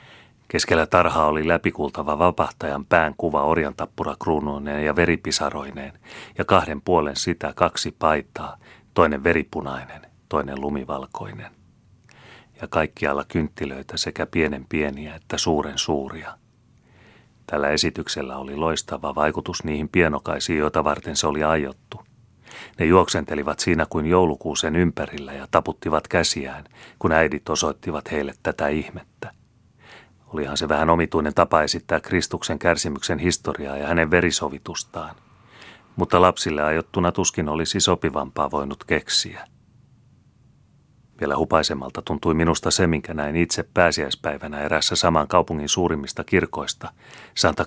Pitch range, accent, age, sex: 75-90 Hz, native, 30-49, male